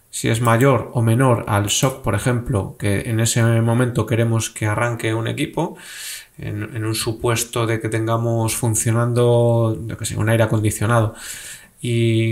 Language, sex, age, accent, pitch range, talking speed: Spanish, male, 20-39, Spanish, 115-125 Hz, 145 wpm